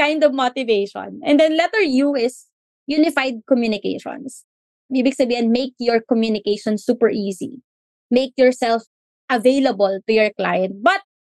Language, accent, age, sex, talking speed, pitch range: English, Filipino, 20-39, female, 120 wpm, 215-275 Hz